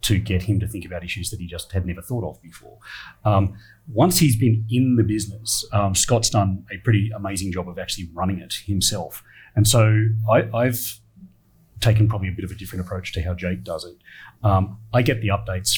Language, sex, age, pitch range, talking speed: English, male, 30-49, 95-115 Hz, 210 wpm